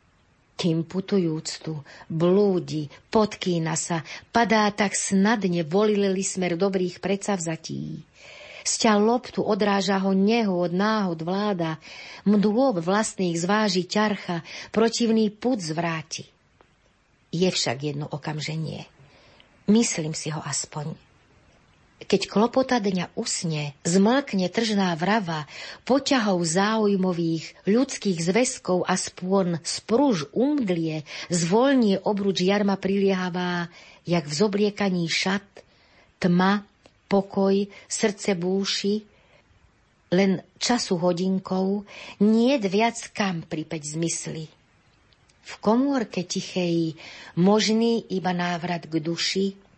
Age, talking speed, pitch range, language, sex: 40-59, 95 wpm, 170-210 Hz, Slovak, female